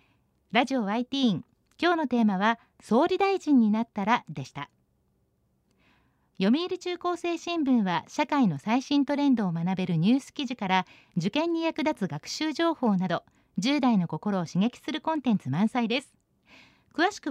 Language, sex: Japanese, female